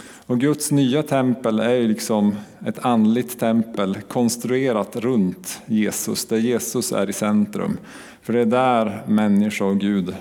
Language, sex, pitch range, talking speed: Swedish, male, 105-130 Hz, 140 wpm